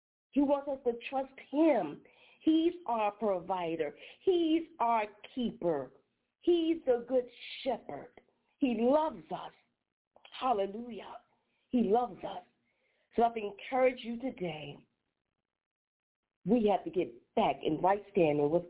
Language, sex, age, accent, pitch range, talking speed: English, female, 40-59, American, 175-235 Hz, 120 wpm